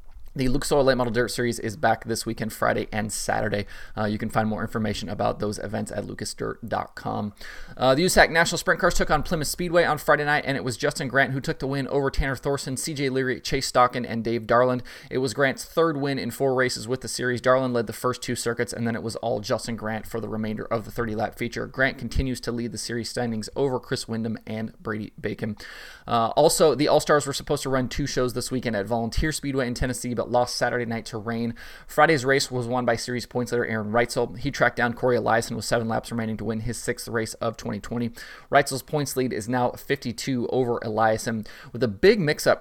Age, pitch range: 20-39, 115-130 Hz